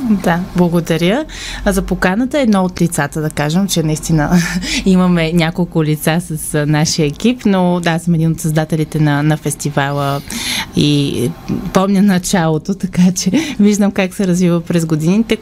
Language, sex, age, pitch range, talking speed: Bulgarian, female, 20-39, 155-190 Hz, 150 wpm